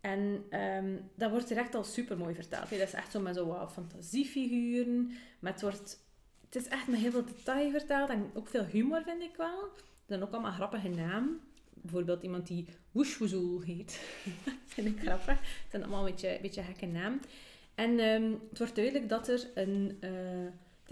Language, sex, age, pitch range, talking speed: Dutch, female, 30-49, 180-235 Hz, 195 wpm